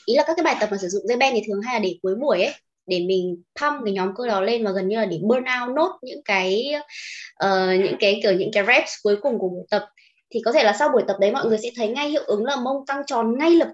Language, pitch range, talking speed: Vietnamese, 200-280 Hz, 300 wpm